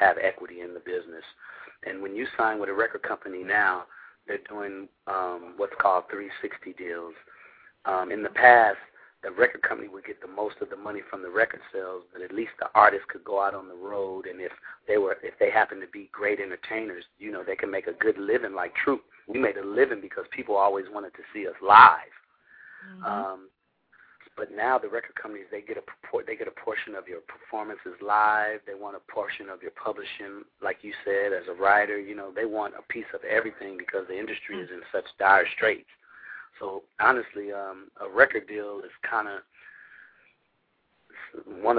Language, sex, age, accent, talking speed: English, male, 40-59, American, 200 wpm